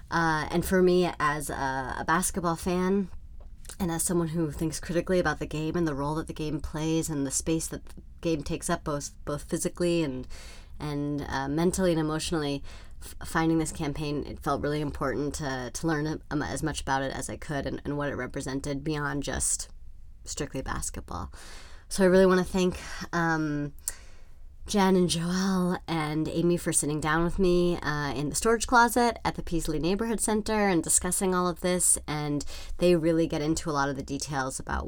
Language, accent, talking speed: English, American, 195 wpm